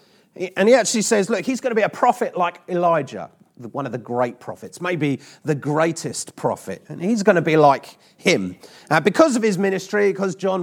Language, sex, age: English, male, 30-49